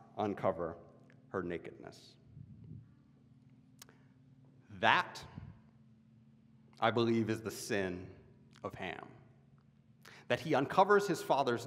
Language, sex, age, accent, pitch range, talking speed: English, male, 40-59, American, 115-135 Hz, 80 wpm